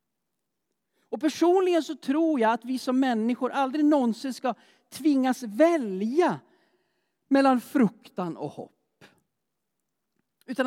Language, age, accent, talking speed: Swedish, 50-69, native, 105 wpm